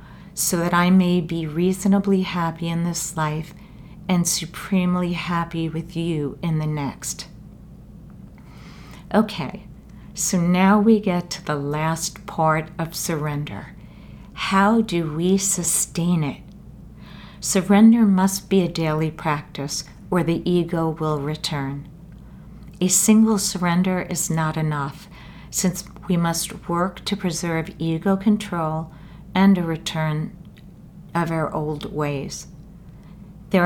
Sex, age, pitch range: female, 50-69, 160-190 Hz